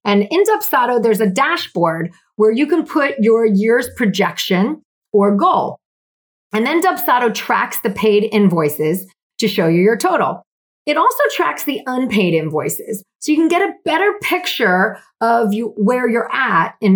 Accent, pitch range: American, 190-265 Hz